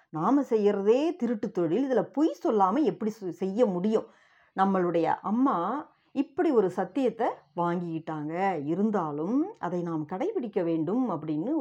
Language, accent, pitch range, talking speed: Tamil, native, 180-280 Hz, 115 wpm